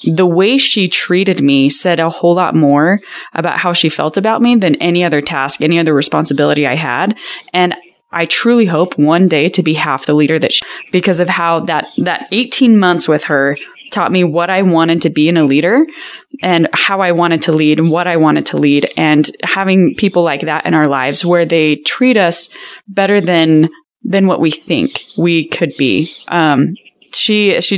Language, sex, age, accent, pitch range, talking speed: English, female, 20-39, American, 160-205 Hz, 200 wpm